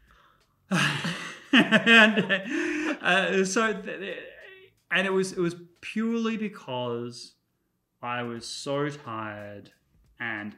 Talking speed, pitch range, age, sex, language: 95 wpm, 120-150 Hz, 20-39, male, English